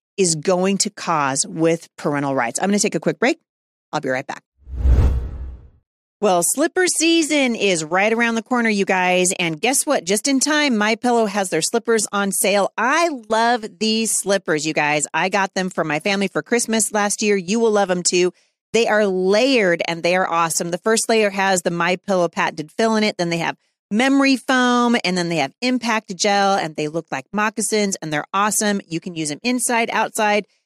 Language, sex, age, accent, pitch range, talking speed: English, female, 30-49, American, 175-230 Hz, 200 wpm